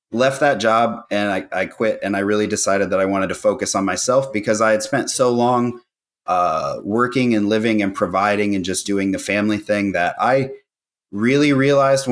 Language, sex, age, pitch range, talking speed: English, male, 30-49, 100-120 Hz, 200 wpm